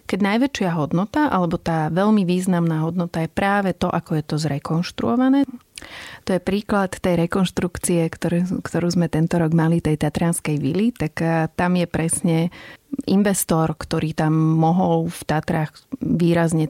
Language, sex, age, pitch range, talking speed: Slovak, female, 30-49, 155-180 Hz, 145 wpm